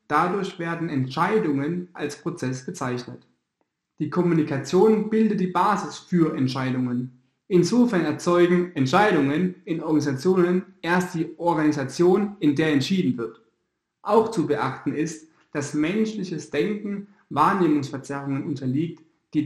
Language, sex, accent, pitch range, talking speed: German, male, German, 145-190 Hz, 110 wpm